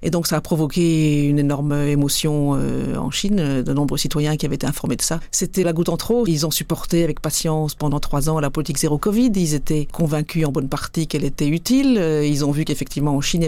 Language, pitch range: French, 150-170 Hz